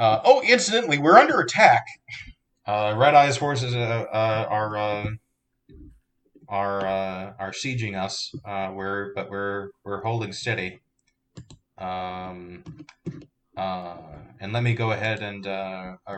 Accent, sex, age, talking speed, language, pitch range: American, male, 30-49, 130 wpm, English, 100-130 Hz